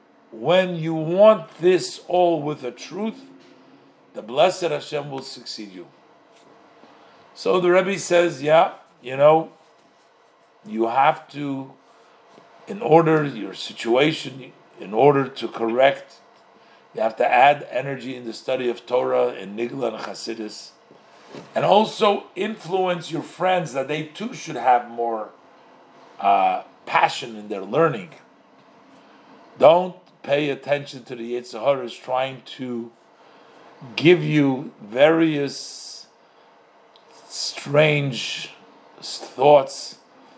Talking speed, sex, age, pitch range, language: 115 wpm, male, 50-69, 120-170 Hz, English